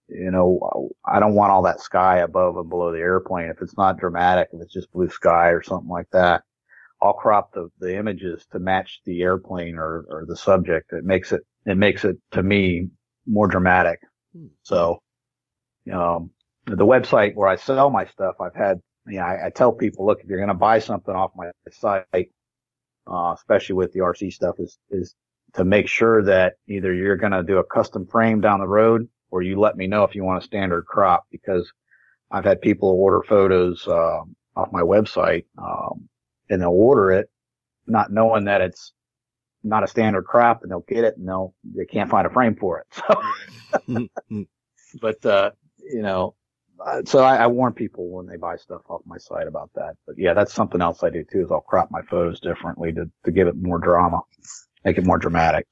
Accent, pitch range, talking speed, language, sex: American, 90-105 Hz, 205 wpm, English, male